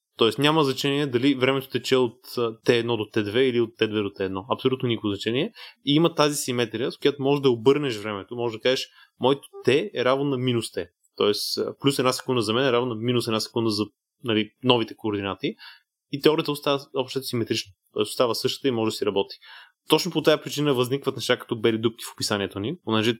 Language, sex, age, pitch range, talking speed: Bulgarian, male, 20-39, 110-135 Hz, 200 wpm